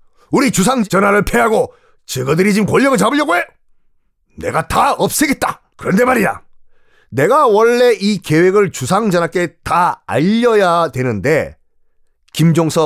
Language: Korean